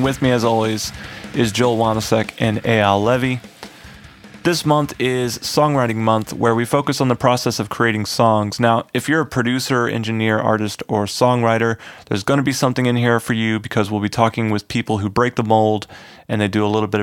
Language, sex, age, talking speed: English, male, 30-49, 205 wpm